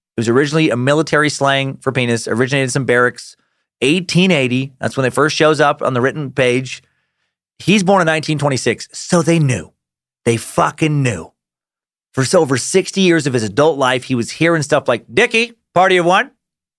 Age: 30-49